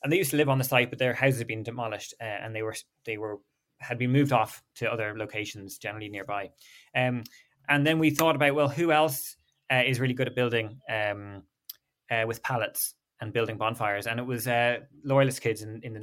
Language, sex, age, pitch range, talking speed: English, male, 20-39, 115-145 Hz, 225 wpm